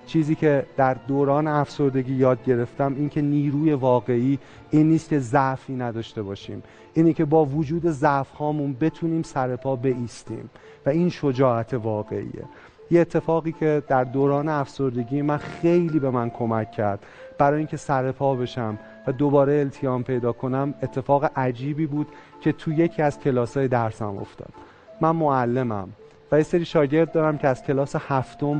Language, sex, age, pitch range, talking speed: Persian, male, 30-49, 130-155 Hz, 145 wpm